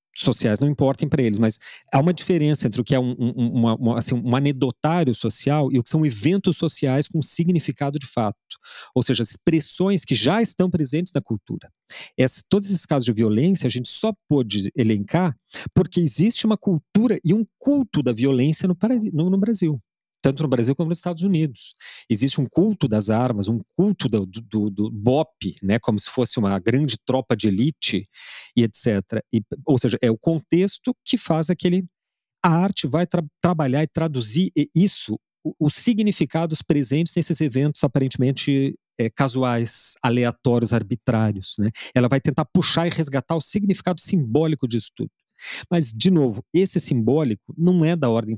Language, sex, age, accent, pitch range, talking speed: Portuguese, male, 40-59, Brazilian, 120-170 Hz, 175 wpm